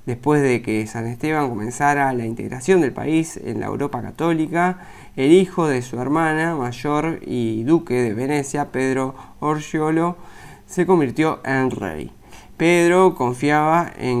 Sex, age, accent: male, 20-39, Argentinian